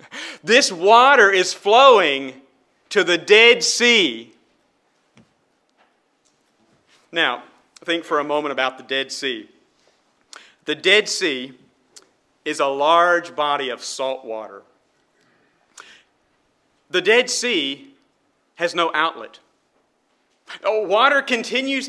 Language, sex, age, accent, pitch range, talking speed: English, male, 40-59, American, 175-255 Hz, 95 wpm